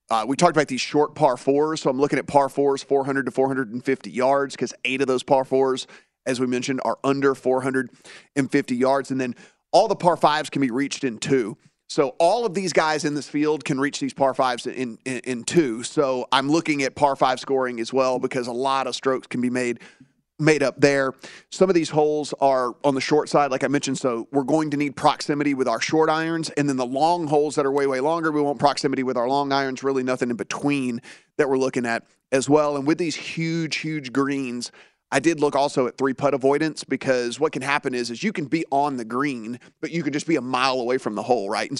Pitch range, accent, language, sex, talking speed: 130-150 Hz, American, English, male, 240 wpm